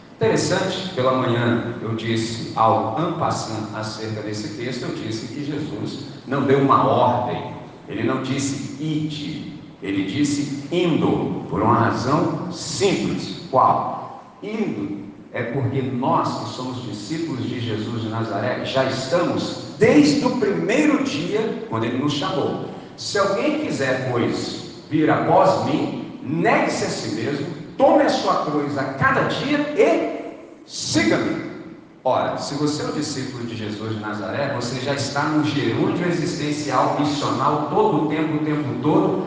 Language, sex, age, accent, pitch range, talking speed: Portuguese, male, 50-69, Brazilian, 120-155 Hz, 145 wpm